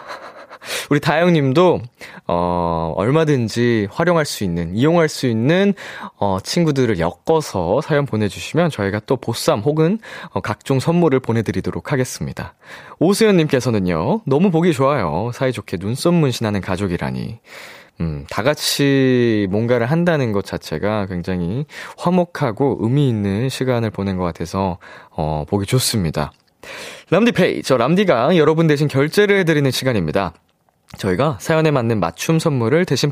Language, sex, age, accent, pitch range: Korean, male, 20-39, native, 105-160 Hz